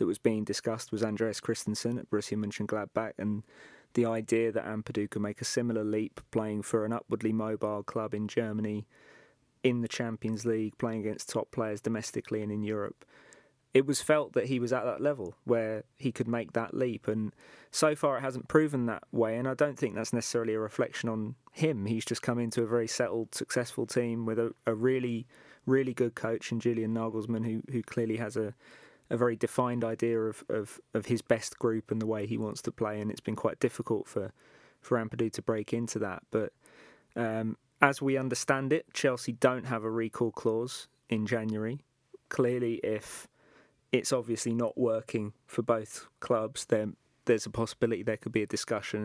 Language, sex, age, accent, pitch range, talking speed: English, male, 20-39, British, 110-120 Hz, 190 wpm